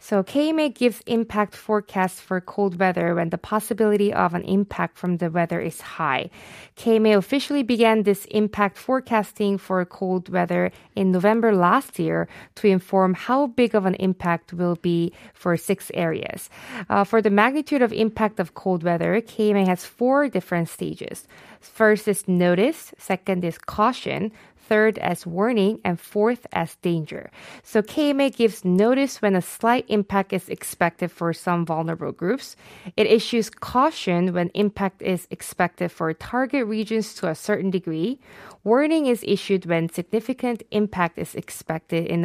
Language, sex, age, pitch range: Korean, female, 20-39, 175-220 Hz